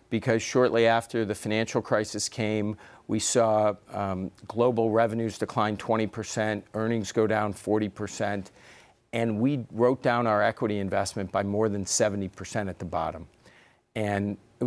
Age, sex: 50-69, male